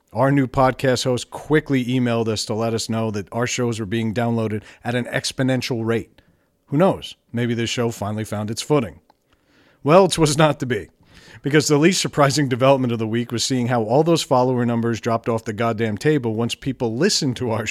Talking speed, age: 205 wpm, 40-59